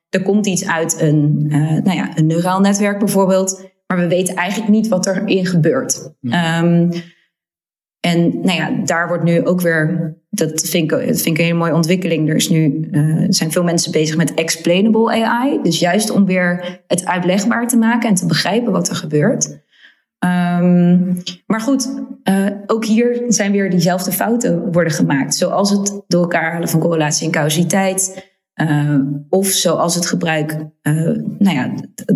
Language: Dutch